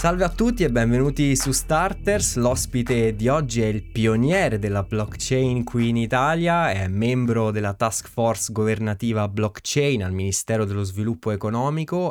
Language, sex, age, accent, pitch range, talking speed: Italian, male, 20-39, native, 100-125 Hz, 150 wpm